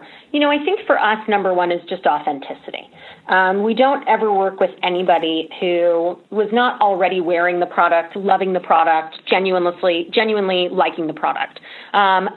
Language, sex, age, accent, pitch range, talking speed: English, female, 30-49, American, 175-225 Hz, 170 wpm